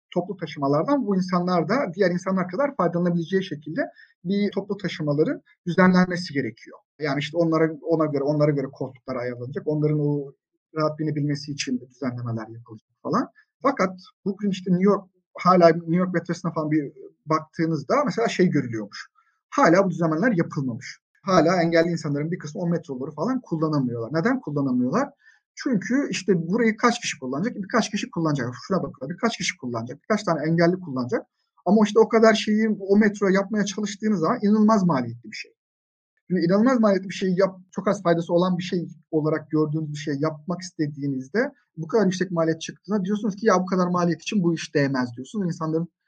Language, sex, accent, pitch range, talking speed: Turkish, male, native, 150-200 Hz, 165 wpm